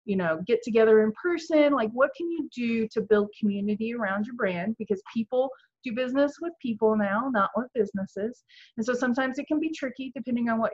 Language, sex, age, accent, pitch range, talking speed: English, female, 30-49, American, 195-255 Hz, 205 wpm